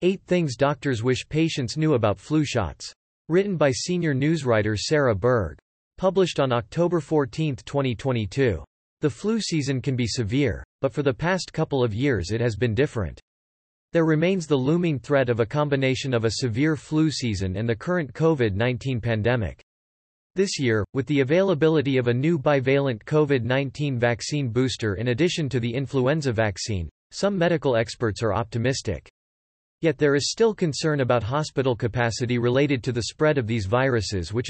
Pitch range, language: 115-150 Hz, English